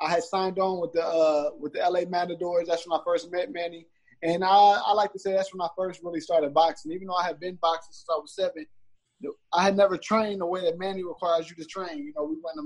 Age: 20-39